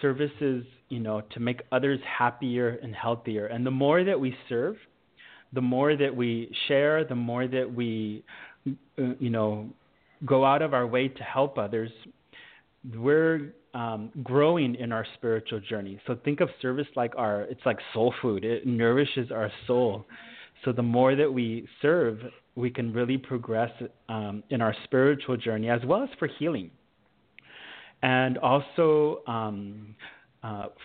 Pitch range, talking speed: 115-135 Hz, 155 wpm